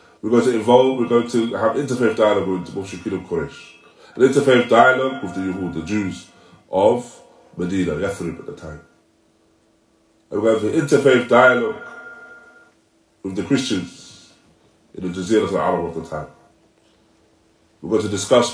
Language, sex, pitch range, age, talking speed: English, male, 110-155 Hz, 20-39, 160 wpm